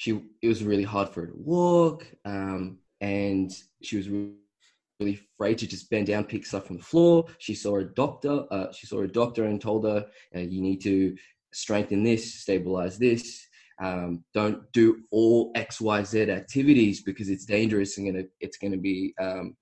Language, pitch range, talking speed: English, 95-115 Hz, 190 wpm